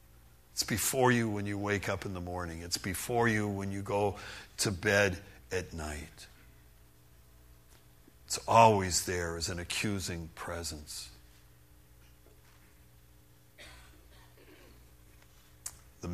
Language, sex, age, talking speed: English, male, 60-79, 105 wpm